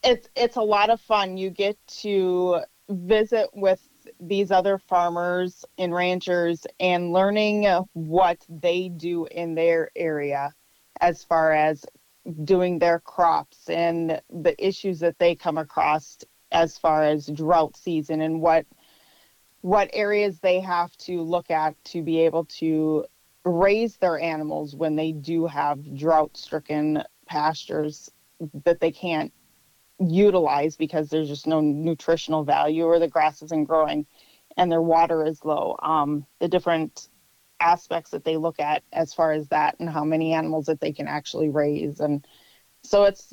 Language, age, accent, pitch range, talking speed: English, 30-49, American, 155-180 Hz, 150 wpm